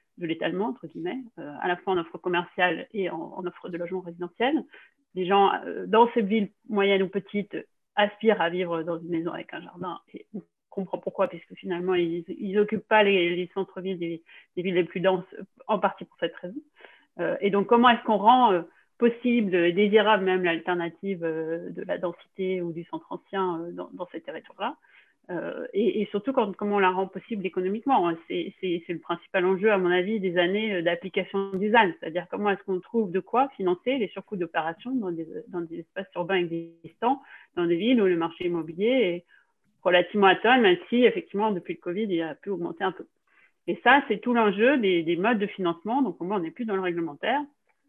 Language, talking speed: French, 210 wpm